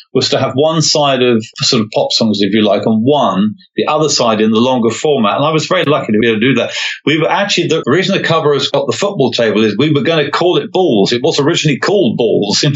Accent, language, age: British, English, 40-59